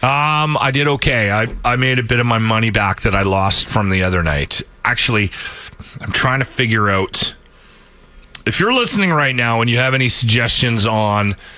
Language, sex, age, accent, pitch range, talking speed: English, male, 40-59, American, 95-135 Hz, 190 wpm